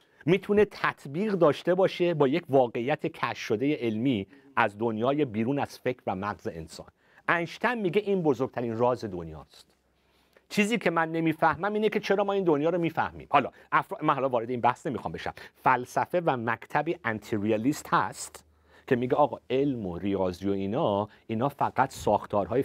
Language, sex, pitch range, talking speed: Persian, male, 105-165 Hz, 165 wpm